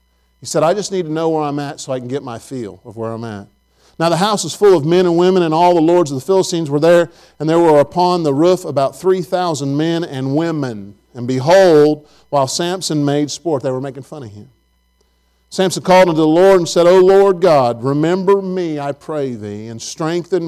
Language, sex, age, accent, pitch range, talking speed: English, male, 50-69, American, 120-170 Hz, 230 wpm